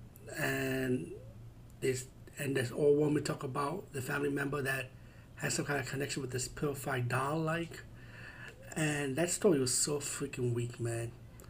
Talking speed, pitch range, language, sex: 155 wpm, 125-150 Hz, English, male